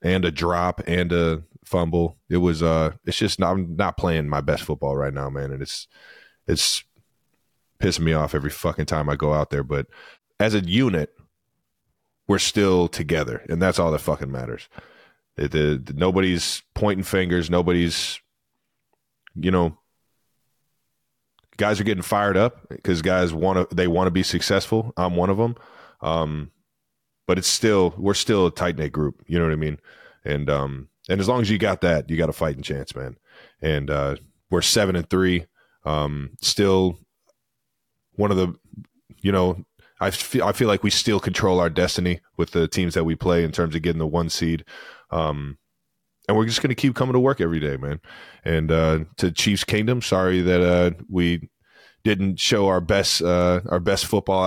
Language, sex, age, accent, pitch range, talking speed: English, male, 20-39, American, 80-100 Hz, 185 wpm